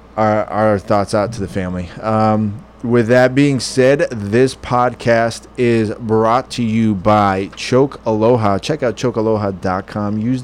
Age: 20-39